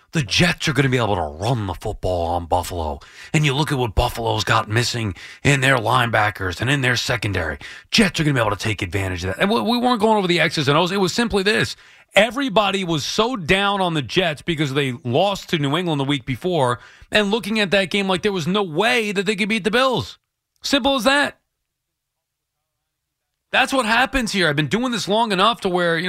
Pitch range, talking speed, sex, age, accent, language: 135-195 Hz, 230 wpm, male, 30-49, American, English